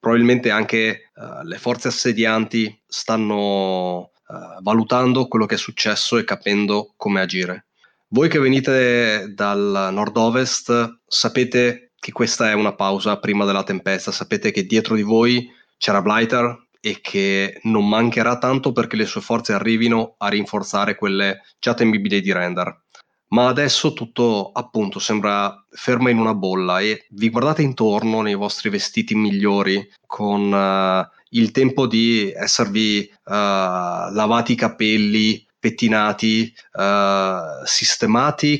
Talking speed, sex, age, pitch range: 130 wpm, male, 20-39, 100-120 Hz